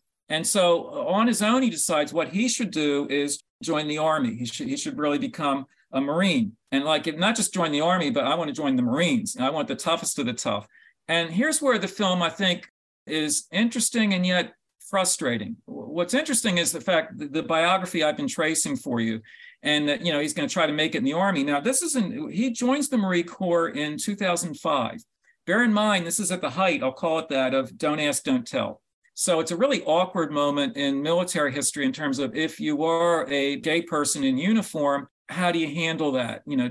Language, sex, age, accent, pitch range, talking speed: English, male, 50-69, American, 150-225 Hz, 225 wpm